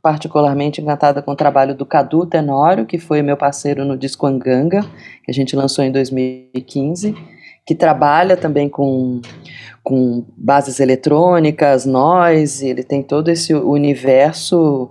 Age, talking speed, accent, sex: 20-39, 135 wpm, Brazilian, female